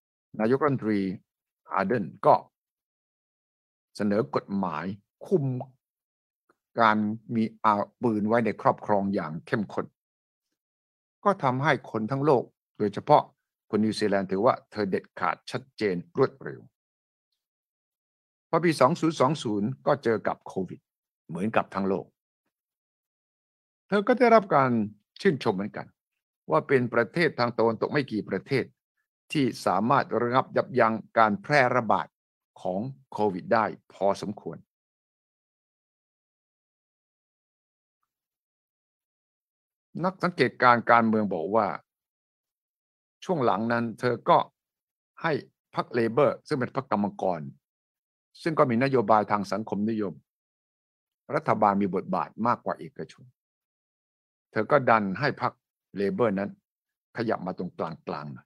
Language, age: English, 60-79